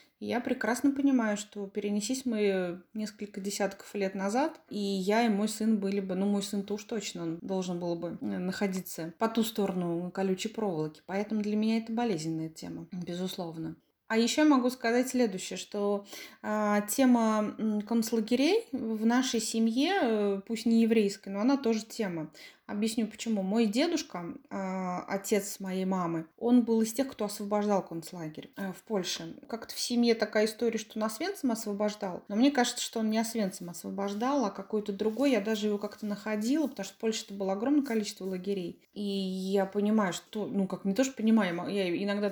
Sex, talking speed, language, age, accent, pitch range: female, 170 wpm, Russian, 20-39, native, 190-225 Hz